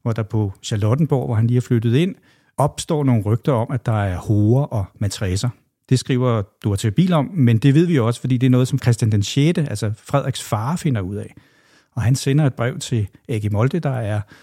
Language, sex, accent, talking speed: Danish, male, native, 220 wpm